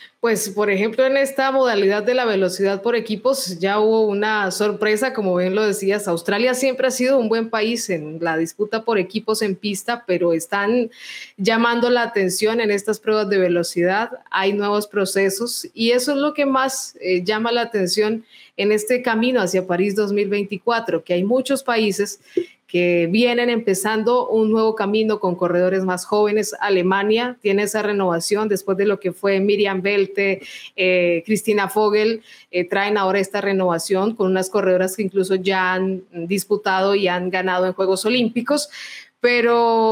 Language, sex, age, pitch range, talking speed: Spanish, female, 20-39, 190-230 Hz, 165 wpm